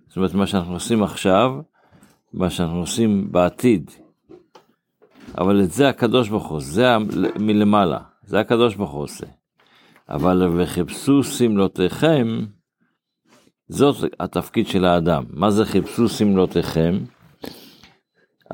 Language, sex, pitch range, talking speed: Hebrew, male, 90-115 Hz, 110 wpm